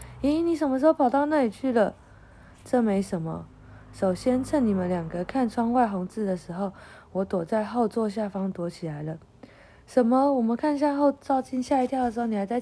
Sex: female